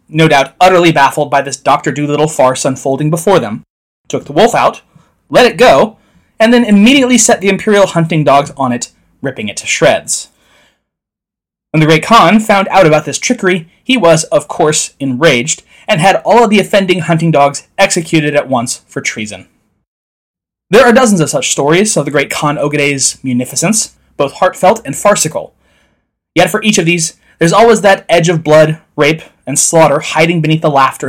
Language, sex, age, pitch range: English, male, 20-39, 140-195 Hz